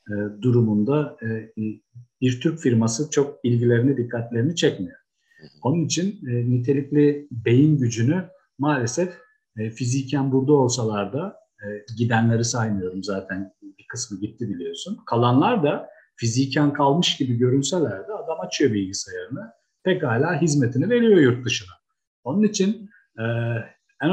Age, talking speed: 50-69, 105 wpm